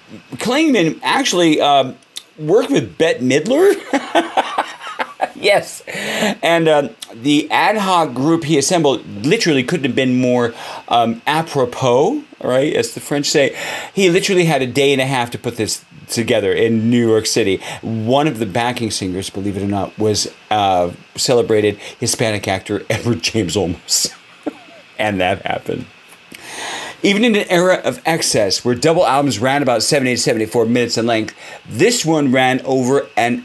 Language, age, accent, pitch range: English, 40-59, American, 115-165 Hz